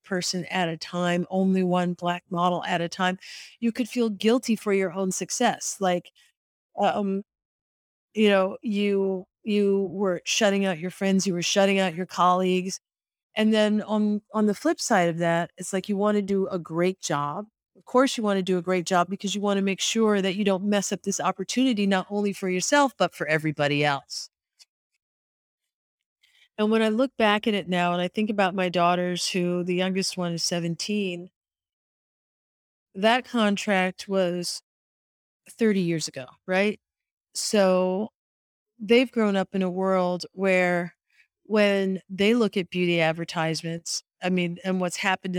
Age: 40-59